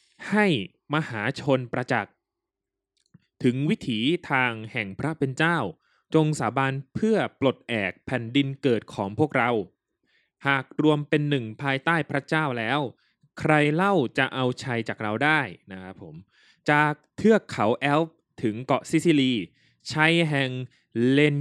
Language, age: Thai, 20-39